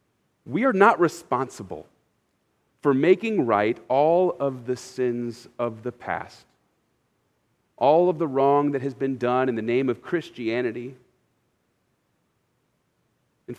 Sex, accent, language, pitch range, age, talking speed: male, American, English, 125-180 Hz, 40-59, 125 wpm